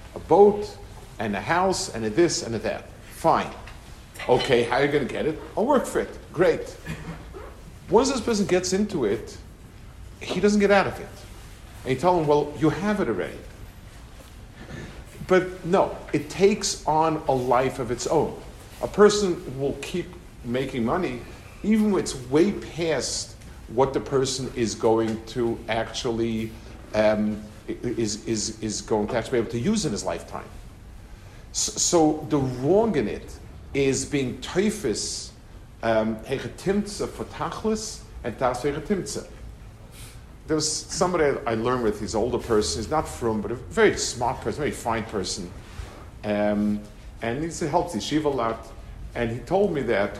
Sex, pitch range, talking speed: male, 110-170 Hz, 160 wpm